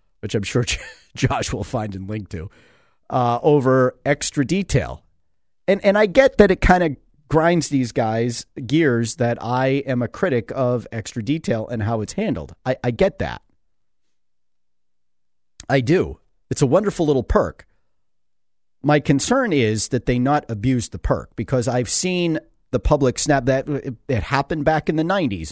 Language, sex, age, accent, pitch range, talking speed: English, male, 40-59, American, 110-145 Hz, 165 wpm